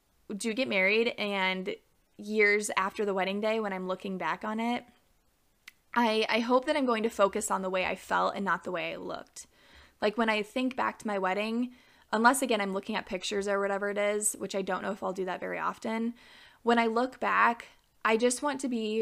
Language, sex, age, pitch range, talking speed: English, female, 20-39, 190-235 Hz, 225 wpm